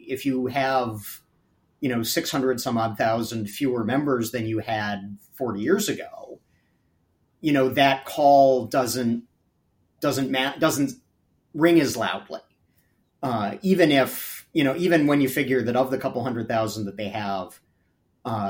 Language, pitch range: English, 105-130 Hz